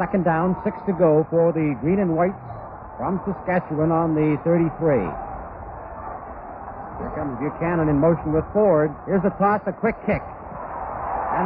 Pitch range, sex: 180-220 Hz, male